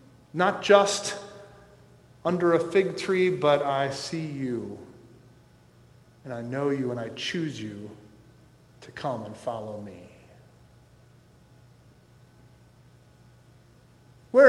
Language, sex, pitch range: English, male, 135-200 Hz